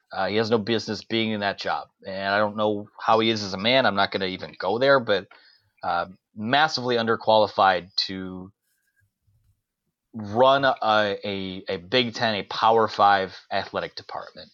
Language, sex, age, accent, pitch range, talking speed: English, male, 30-49, American, 100-125 Hz, 175 wpm